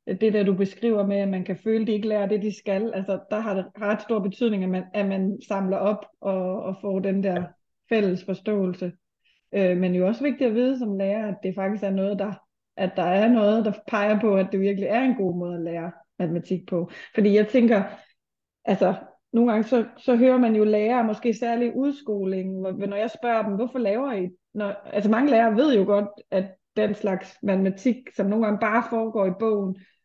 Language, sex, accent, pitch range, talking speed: Danish, female, native, 195-230 Hz, 220 wpm